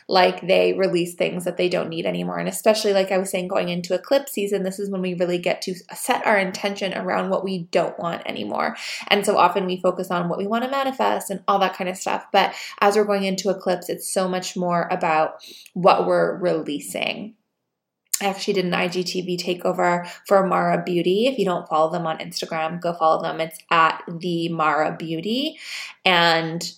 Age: 20-39